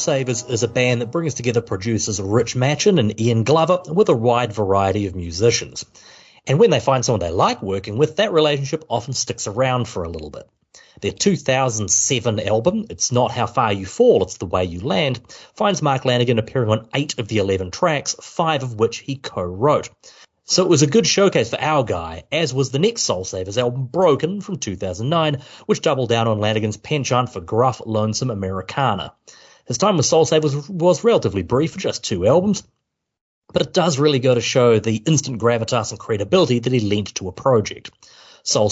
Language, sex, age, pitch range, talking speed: English, male, 30-49, 110-150 Hz, 195 wpm